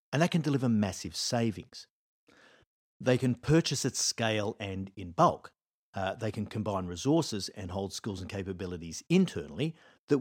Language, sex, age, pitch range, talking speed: English, male, 50-69, 95-140 Hz, 155 wpm